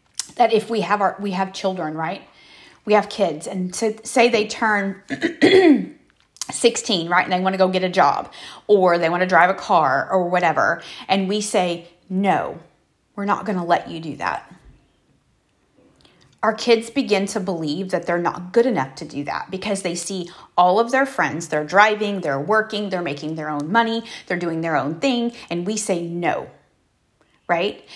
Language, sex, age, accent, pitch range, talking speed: English, female, 30-49, American, 180-215 Hz, 180 wpm